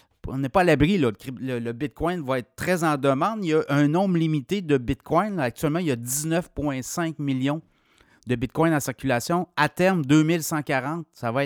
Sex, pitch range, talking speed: male, 120-150 Hz, 200 wpm